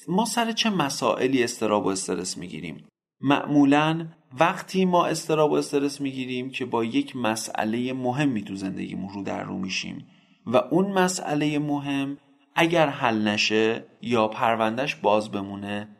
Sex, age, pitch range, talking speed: male, 30-49, 115-165 Hz, 145 wpm